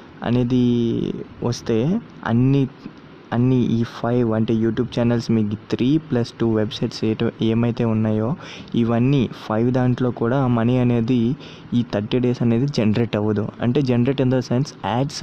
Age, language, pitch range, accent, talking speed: 20-39, Telugu, 115-130 Hz, native, 130 wpm